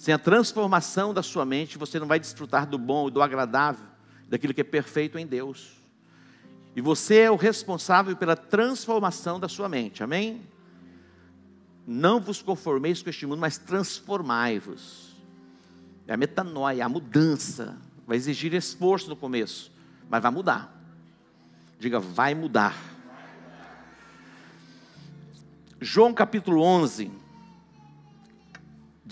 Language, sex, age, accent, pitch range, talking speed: Portuguese, male, 60-79, Brazilian, 125-180 Hz, 120 wpm